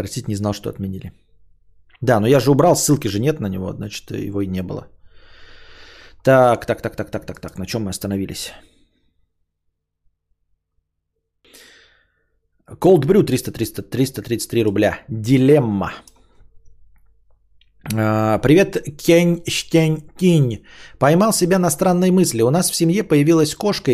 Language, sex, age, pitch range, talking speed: Bulgarian, male, 20-39, 110-165 Hz, 130 wpm